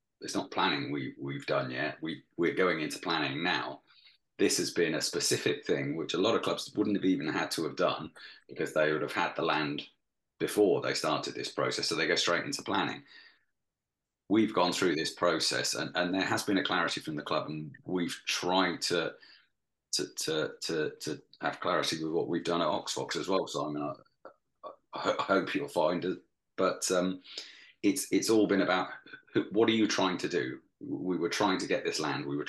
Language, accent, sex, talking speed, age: English, British, male, 210 wpm, 30-49